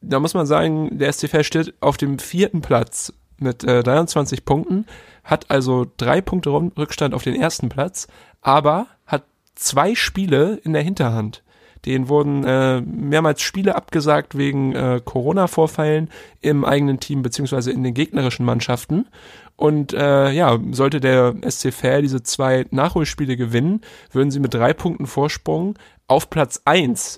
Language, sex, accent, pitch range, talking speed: German, male, German, 125-155 Hz, 150 wpm